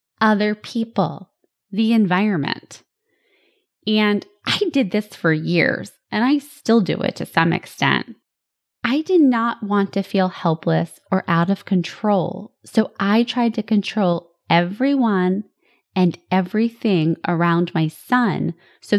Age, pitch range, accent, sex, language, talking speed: 20-39, 170-225 Hz, American, female, English, 130 wpm